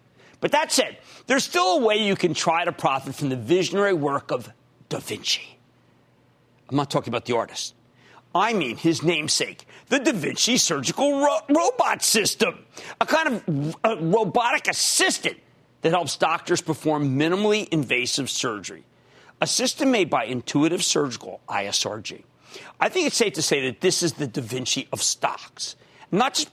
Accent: American